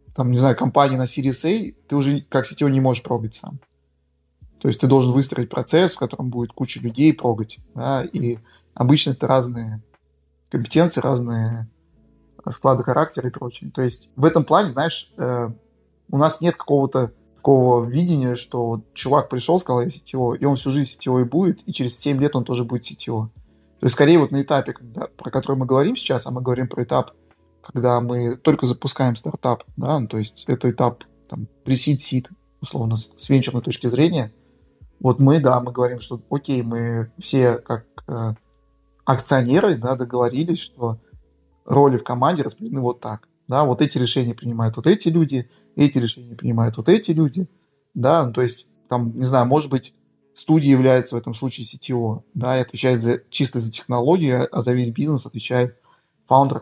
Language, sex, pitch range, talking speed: Russian, male, 120-140 Hz, 175 wpm